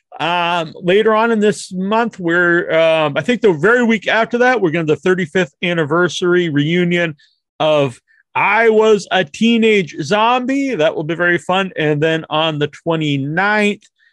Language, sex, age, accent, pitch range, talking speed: English, male, 40-59, American, 165-235 Hz, 160 wpm